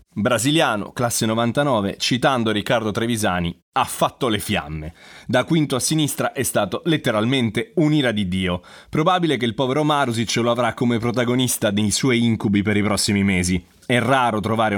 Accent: native